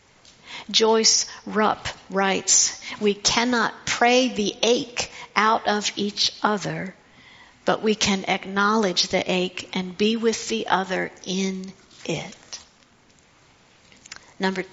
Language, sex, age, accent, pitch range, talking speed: English, female, 50-69, American, 185-210 Hz, 105 wpm